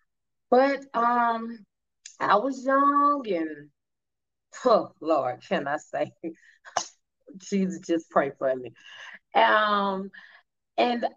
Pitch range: 175-235 Hz